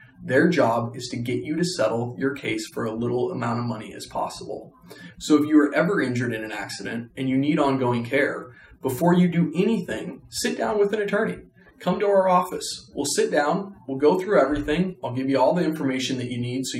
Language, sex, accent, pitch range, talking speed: English, male, American, 125-170 Hz, 220 wpm